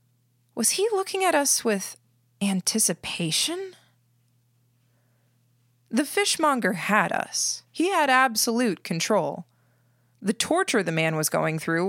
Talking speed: 110 wpm